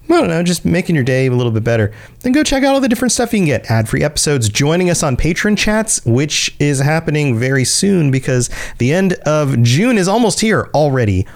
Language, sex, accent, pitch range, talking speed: English, male, American, 115-160 Hz, 225 wpm